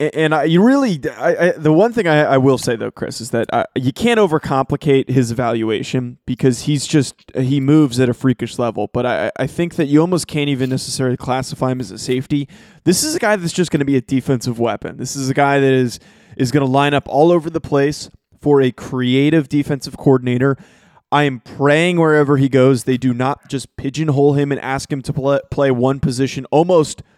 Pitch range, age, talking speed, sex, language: 130-150 Hz, 20-39, 215 wpm, male, English